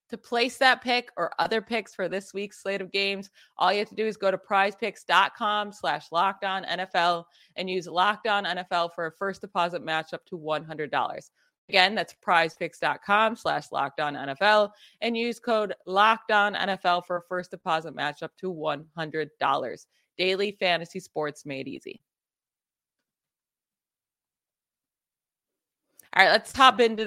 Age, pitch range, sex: 20-39, 175-225 Hz, female